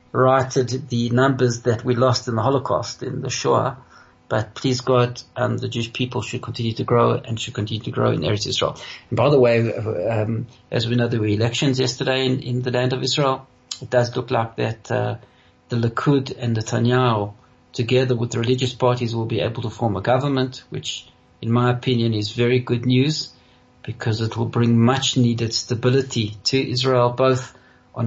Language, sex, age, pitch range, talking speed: English, male, 40-59, 120-130 Hz, 195 wpm